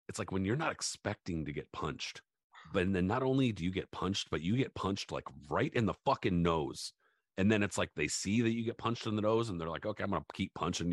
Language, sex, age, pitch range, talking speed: English, male, 40-59, 80-100 Hz, 270 wpm